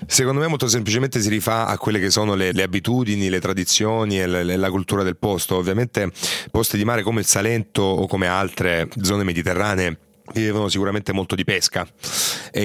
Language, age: Italian, 30-49